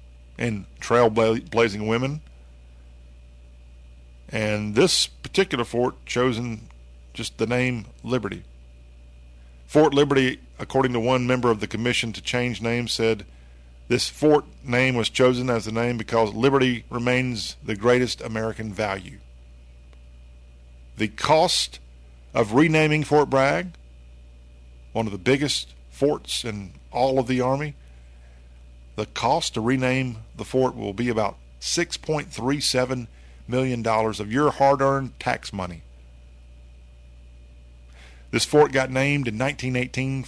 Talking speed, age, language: 120 wpm, 50-69, English